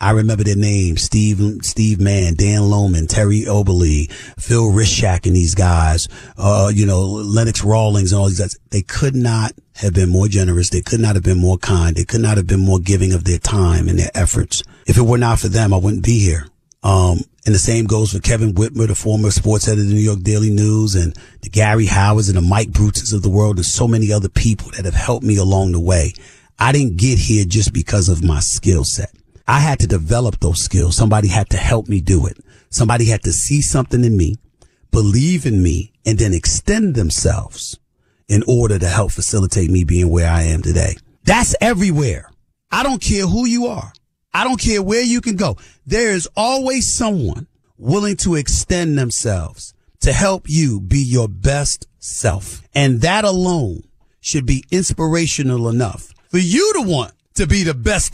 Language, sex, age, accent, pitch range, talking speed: English, male, 40-59, American, 95-120 Hz, 200 wpm